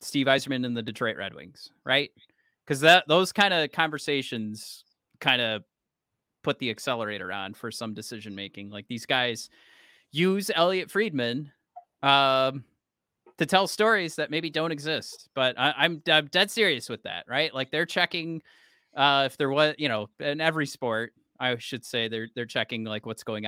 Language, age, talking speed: English, 30-49, 175 wpm